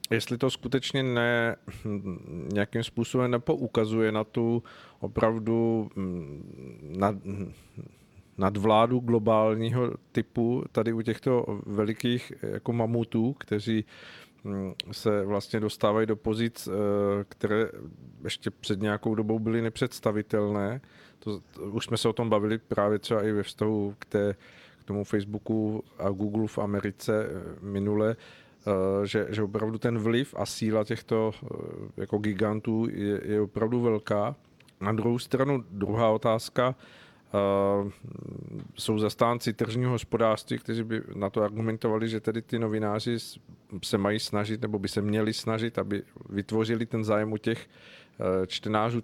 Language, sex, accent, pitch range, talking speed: Czech, male, native, 105-115 Hz, 120 wpm